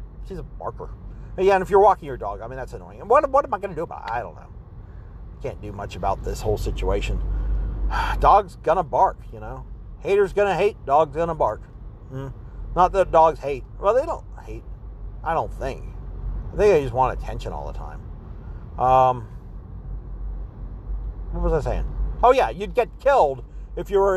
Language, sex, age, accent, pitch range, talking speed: English, male, 40-59, American, 120-190 Hz, 205 wpm